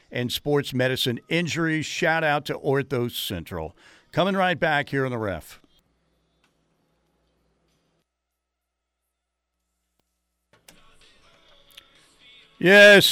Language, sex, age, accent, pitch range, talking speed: English, male, 50-69, American, 125-150 Hz, 80 wpm